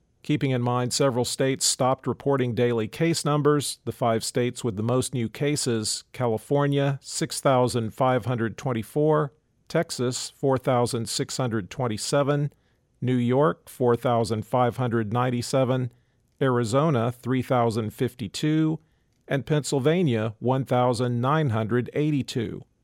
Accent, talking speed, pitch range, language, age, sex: American, 80 wpm, 120-145 Hz, English, 50-69, male